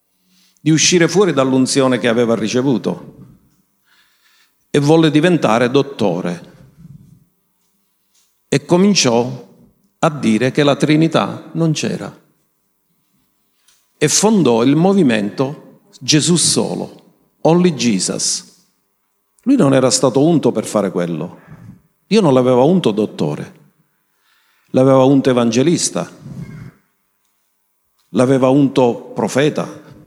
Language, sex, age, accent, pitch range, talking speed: Italian, male, 50-69, native, 125-200 Hz, 95 wpm